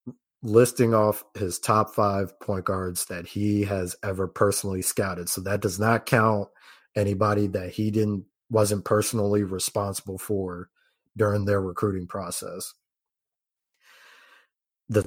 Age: 30-49